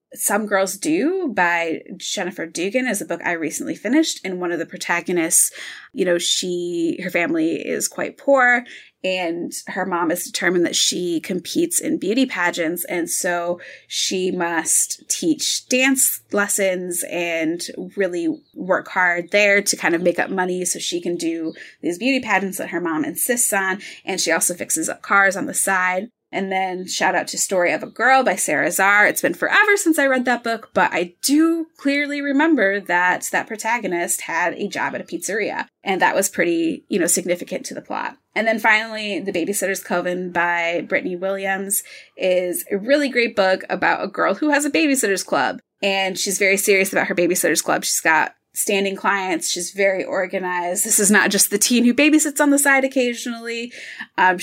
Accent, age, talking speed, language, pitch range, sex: American, 20-39, 185 wpm, English, 180-265 Hz, female